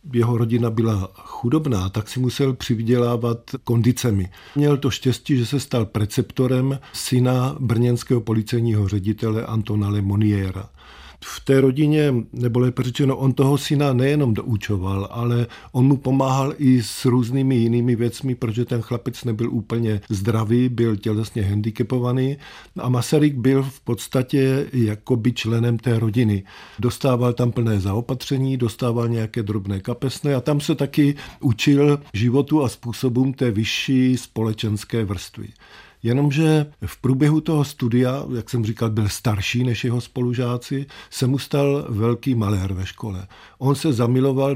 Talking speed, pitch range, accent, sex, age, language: 140 wpm, 110-135 Hz, native, male, 50-69, Czech